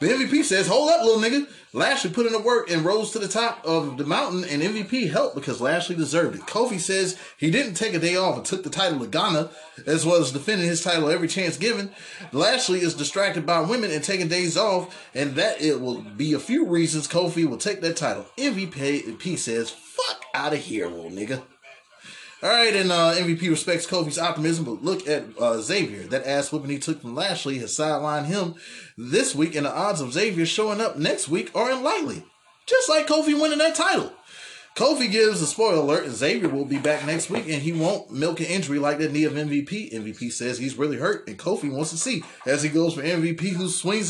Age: 20-39